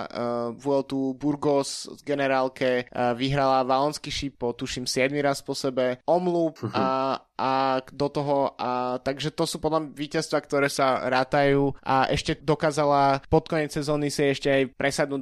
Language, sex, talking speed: Slovak, male, 145 wpm